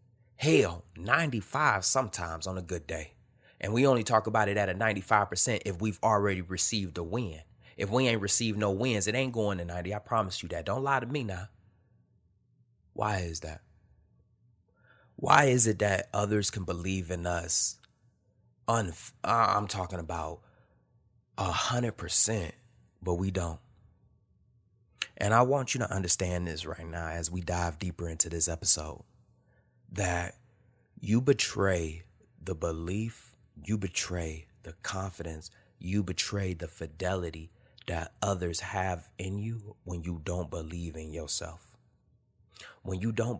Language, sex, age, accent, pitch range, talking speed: English, male, 30-49, American, 85-110 Hz, 145 wpm